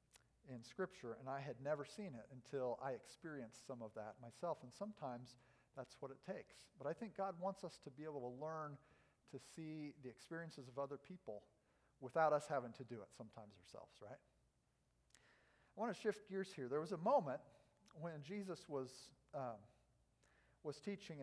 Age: 50-69